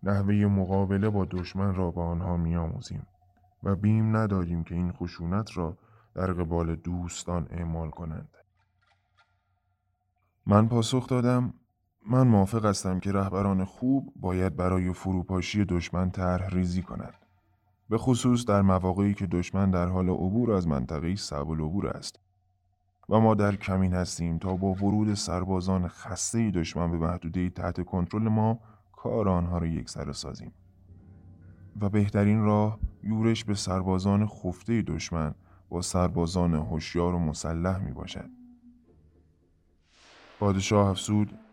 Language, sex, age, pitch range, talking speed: Persian, male, 20-39, 90-105 Hz, 130 wpm